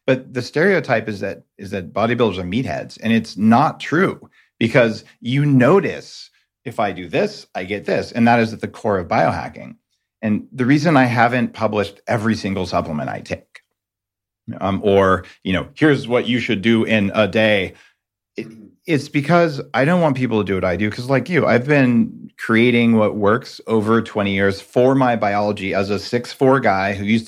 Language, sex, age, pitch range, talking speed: English, male, 40-59, 100-120 Hz, 190 wpm